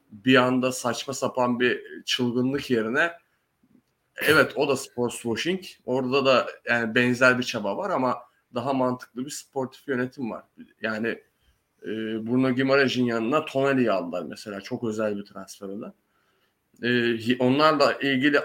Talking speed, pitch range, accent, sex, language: 135 wpm, 125-150 Hz, native, male, Turkish